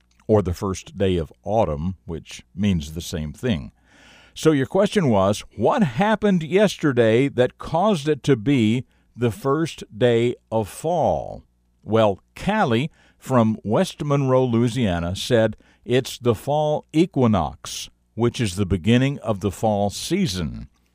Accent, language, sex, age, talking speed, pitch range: American, English, male, 50-69, 135 wpm, 95-130 Hz